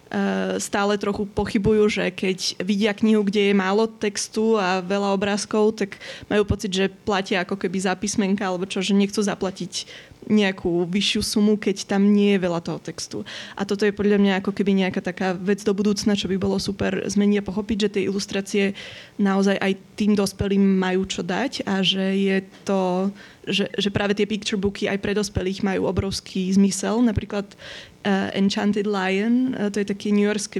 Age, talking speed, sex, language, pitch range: 20-39, 180 wpm, female, Slovak, 195-210 Hz